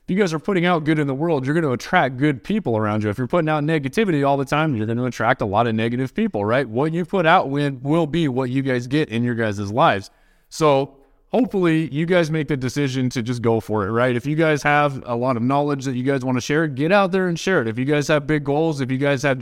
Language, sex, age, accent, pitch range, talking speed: English, male, 20-39, American, 130-170 Hz, 285 wpm